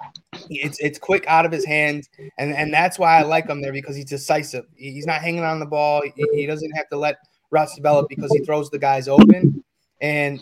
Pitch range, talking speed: 145-170 Hz, 225 wpm